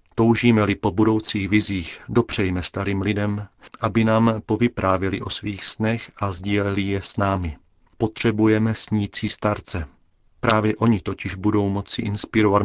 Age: 40-59